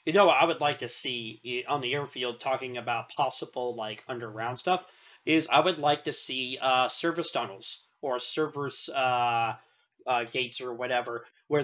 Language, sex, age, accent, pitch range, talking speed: English, male, 20-39, American, 125-145 Hz, 165 wpm